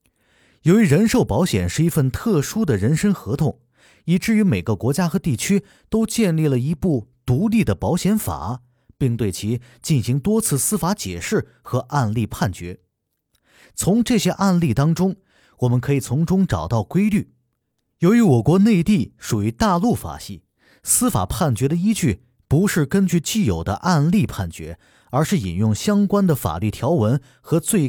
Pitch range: 115-190 Hz